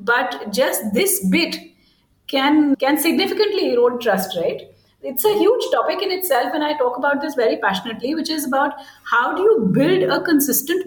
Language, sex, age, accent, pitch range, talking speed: English, female, 50-69, Indian, 205-275 Hz, 175 wpm